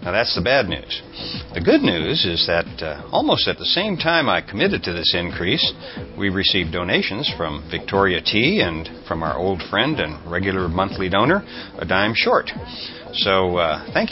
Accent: American